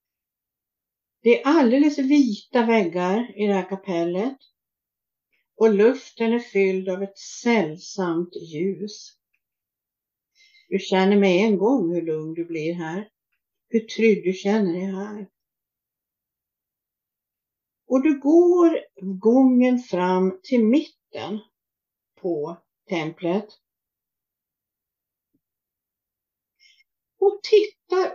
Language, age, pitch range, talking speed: Swedish, 60-79, 185-255 Hz, 95 wpm